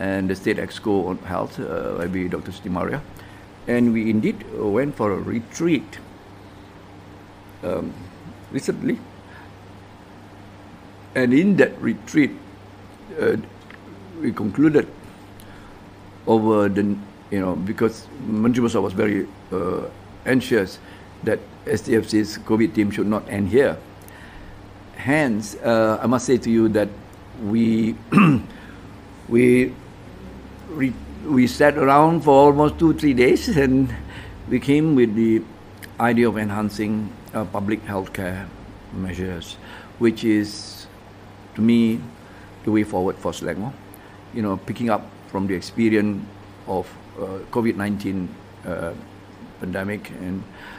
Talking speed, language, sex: 115 wpm, English, male